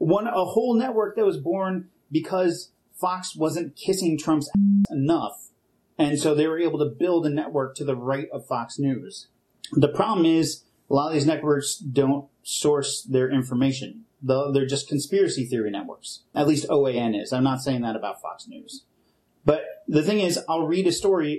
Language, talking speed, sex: English, 180 wpm, male